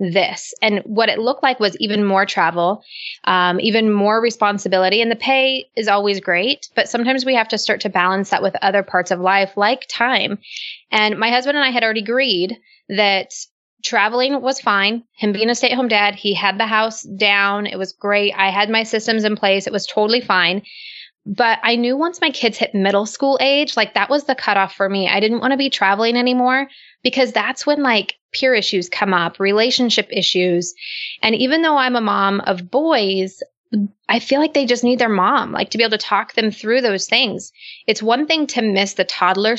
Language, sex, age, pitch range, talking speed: English, female, 20-39, 200-250 Hz, 210 wpm